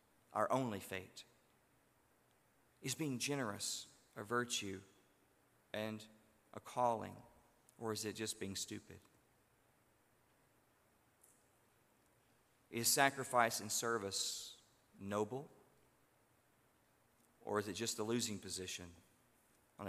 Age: 40-59